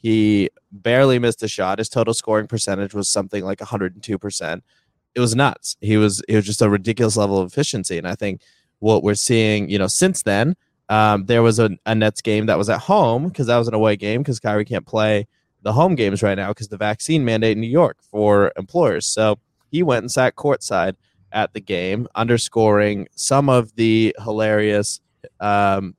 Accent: American